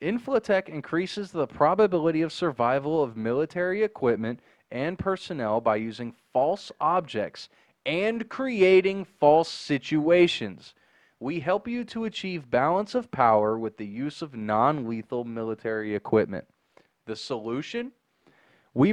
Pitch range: 125-195 Hz